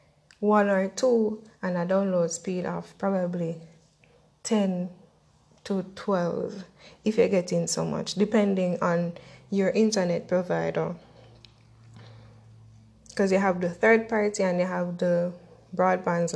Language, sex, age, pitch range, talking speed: English, female, 10-29, 170-205 Hz, 120 wpm